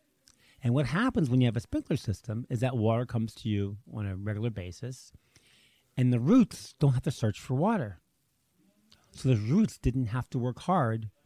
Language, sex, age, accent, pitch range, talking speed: English, male, 40-59, American, 105-130 Hz, 190 wpm